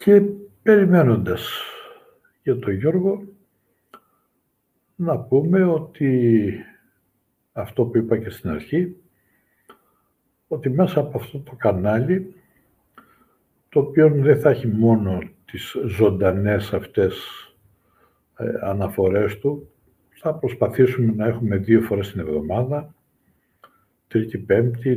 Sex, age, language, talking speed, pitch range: male, 60-79, Greek, 95 wpm, 95-145 Hz